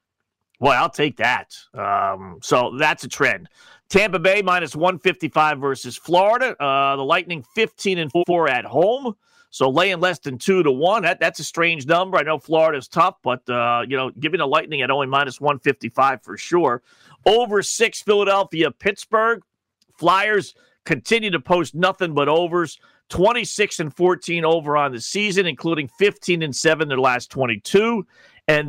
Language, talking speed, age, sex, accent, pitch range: English, 165 wpm, 40-59, male, American, 135-185 Hz